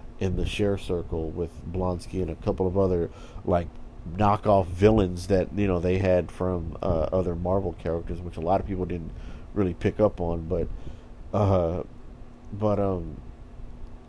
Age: 50-69